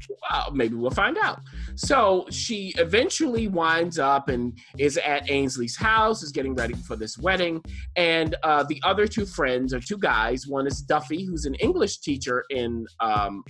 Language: English